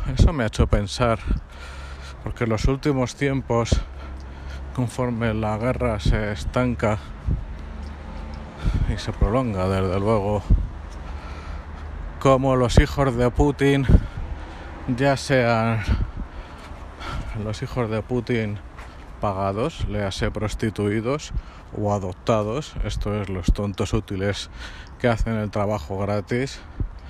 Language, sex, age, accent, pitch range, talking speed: Spanish, male, 50-69, Spanish, 80-120 Hz, 100 wpm